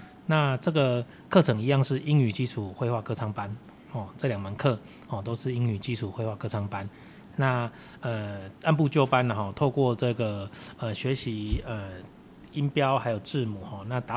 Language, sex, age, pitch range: Chinese, male, 30-49, 105-130 Hz